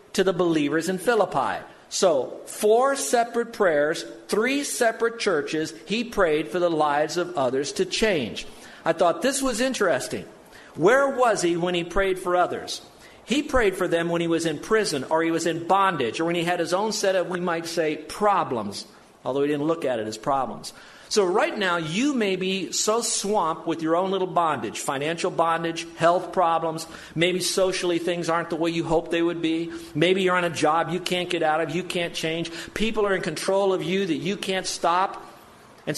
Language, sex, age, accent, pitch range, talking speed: English, male, 50-69, American, 165-205 Hz, 200 wpm